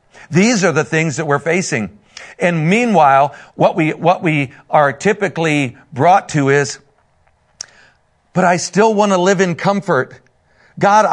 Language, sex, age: English, male, 50-69